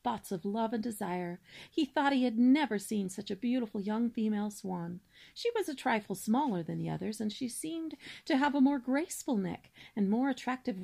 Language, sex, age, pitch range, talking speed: English, female, 40-59, 195-265 Hz, 200 wpm